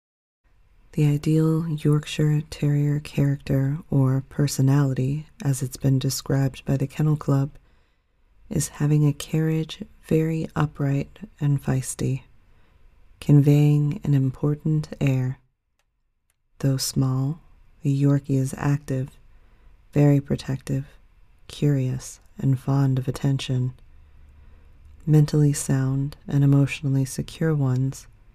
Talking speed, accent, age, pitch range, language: 95 wpm, American, 30-49, 130-150 Hz, English